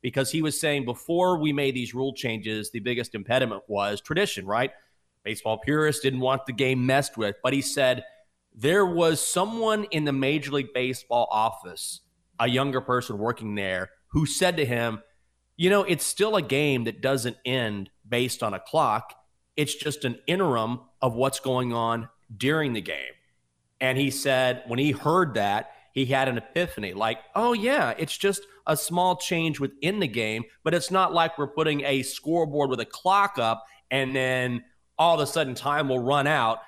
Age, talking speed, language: 30-49, 185 wpm, English